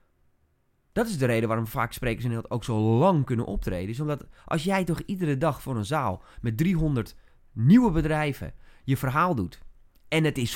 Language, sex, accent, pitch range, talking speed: English, male, Dutch, 105-155 Hz, 195 wpm